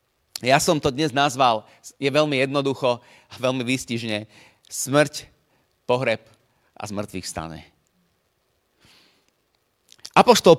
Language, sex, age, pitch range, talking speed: Slovak, male, 30-49, 130-185 Hz, 95 wpm